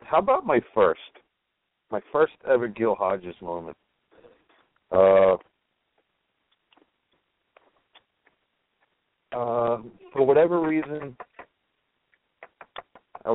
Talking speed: 70 wpm